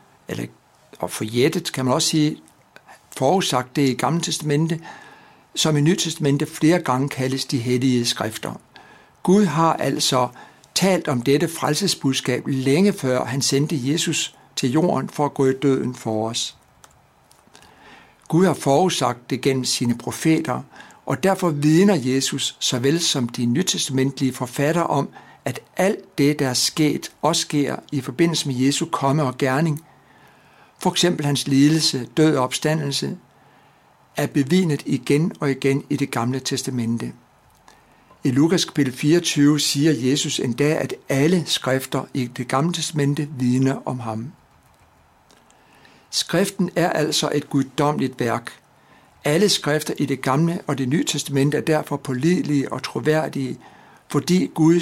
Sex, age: male, 60-79